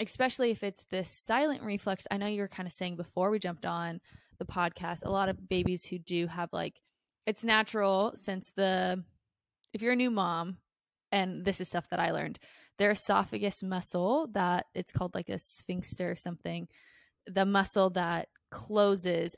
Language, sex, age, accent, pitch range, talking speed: English, female, 20-39, American, 175-205 Hz, 180 wpm